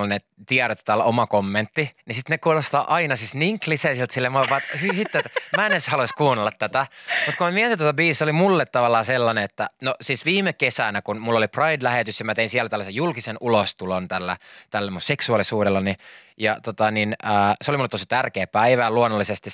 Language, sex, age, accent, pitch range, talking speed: Finnish, male, 20-39, native, 105-145 Hz, 195 wpm